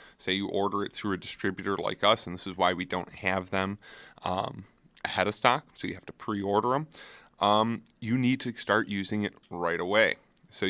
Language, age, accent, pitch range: English, 30-49, American, 95-115 Hz